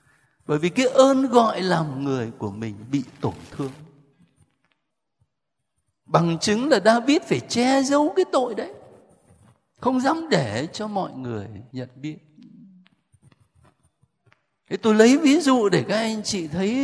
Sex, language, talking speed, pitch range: male, Vietnamese, 145 wpm, 145-225 Hz